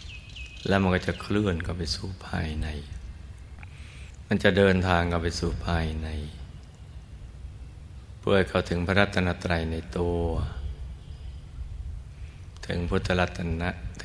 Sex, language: male, Thai